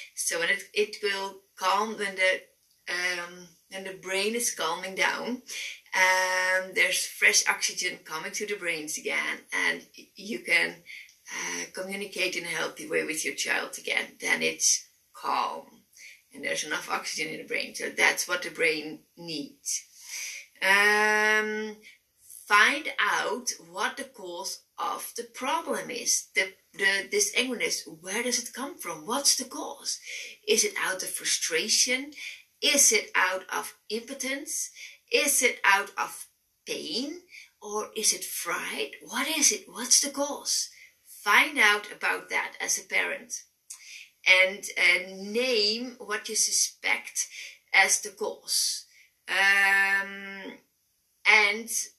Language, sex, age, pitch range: English, female, 30-49, 190-275 Hz